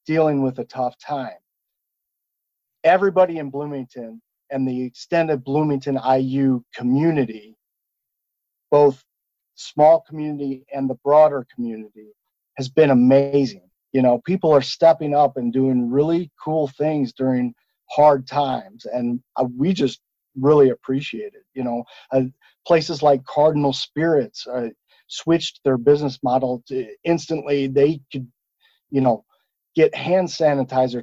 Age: 40-59